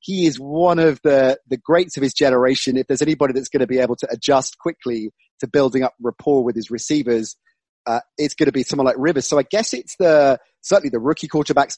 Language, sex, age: English, male, 30-49